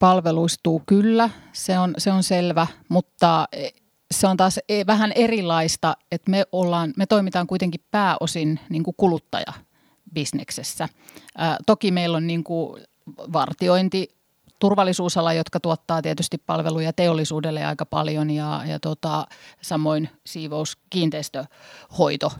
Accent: native